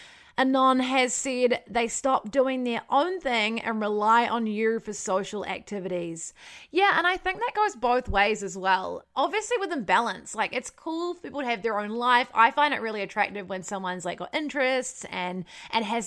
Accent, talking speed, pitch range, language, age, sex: Australian, 195 wpm, 200-280 Hz, English, 20-39, female